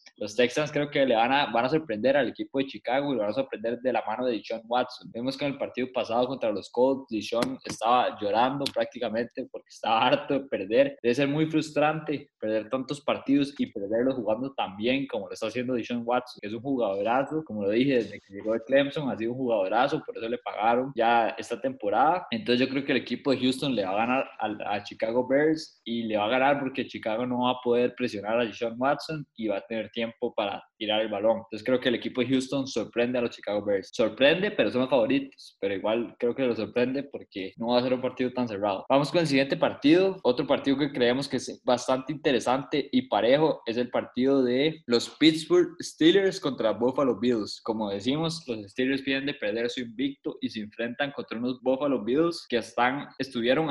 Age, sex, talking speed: 20-39, male, 225 wpm